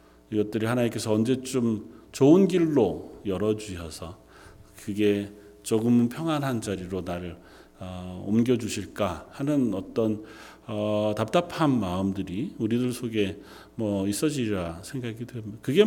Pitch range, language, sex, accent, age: 95-125 Hz, Korean, male, native, 40-59